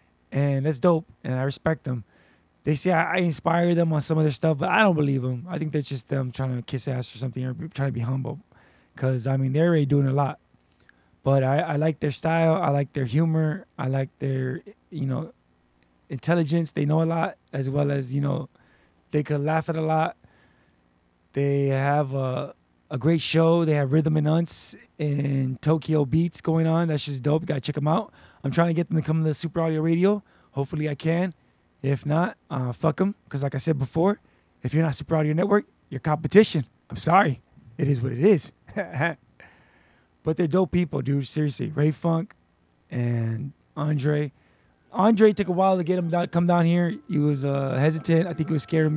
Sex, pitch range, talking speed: male, 135-165 Hz, 210 wpm